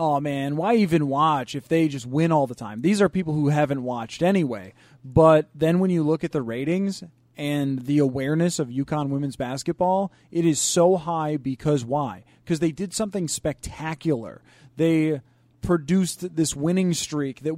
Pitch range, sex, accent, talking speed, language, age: 140-180 Hz, male, American, 175 wpm, English, 30-49